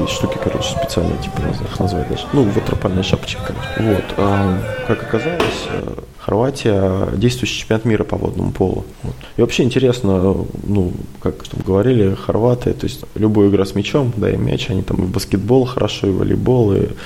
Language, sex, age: Russian, male, 20-39